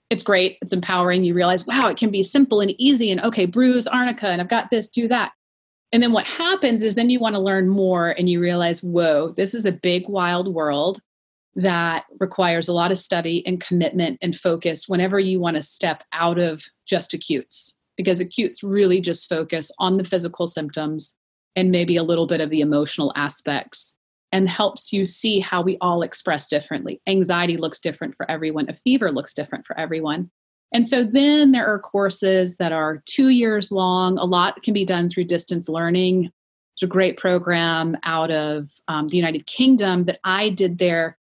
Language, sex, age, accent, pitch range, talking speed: English, female, 30-49, American, 170-200 Hz, 195 wpm